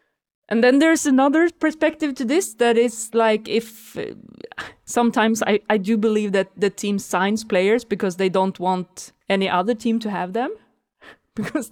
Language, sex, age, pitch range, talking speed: English, female, 20-39, 185-220 Hz, 170 wpm